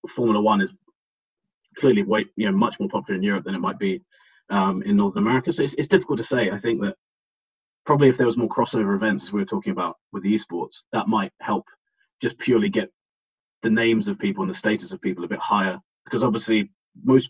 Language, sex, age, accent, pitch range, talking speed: English, male, 30-49, British, 105-140 Hz, 225 wpm